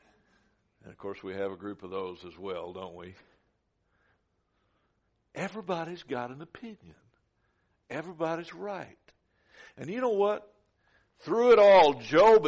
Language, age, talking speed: English, 60-79, 130 wpm